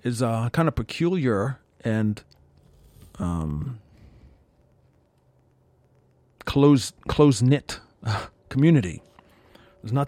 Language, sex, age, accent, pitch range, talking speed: English, male, 40-59, American, 100-135 Hz, 75 wpm